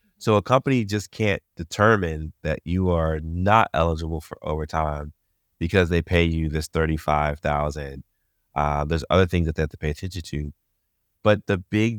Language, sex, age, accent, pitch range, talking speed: English, male, 30-49, American, 80-95 Hz, 165 wpm